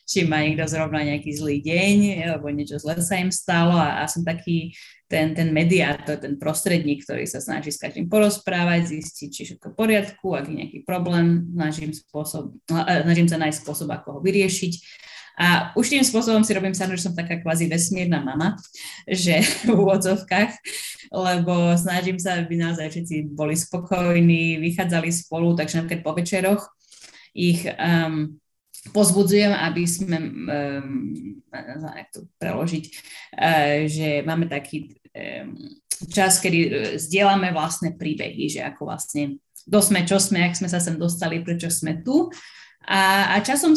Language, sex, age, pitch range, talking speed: Slovak, female, 20-39, 155-190 Hz, 150 wpm